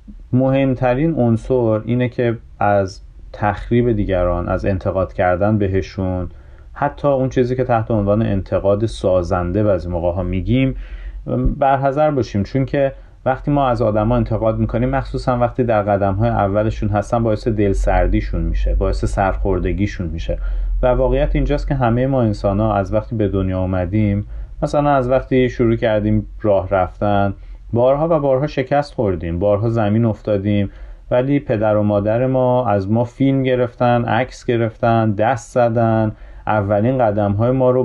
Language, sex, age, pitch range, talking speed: Persian, male, 30-49, 100-130 Hz, 150 wpm